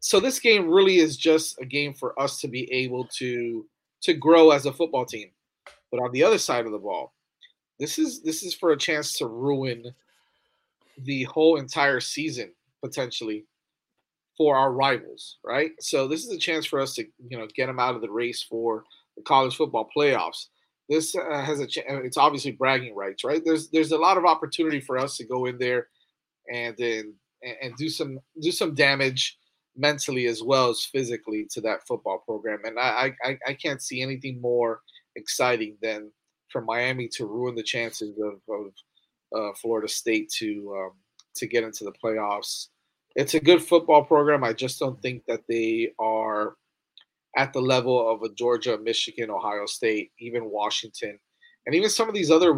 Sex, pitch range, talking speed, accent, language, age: male, 115-155 Hz, 185 wpm, American, English, 30-49